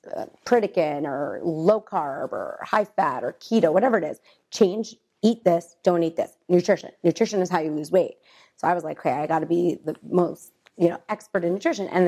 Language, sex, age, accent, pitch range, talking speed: English, female, 30-49, American, 170-225 Hz, 215 wpm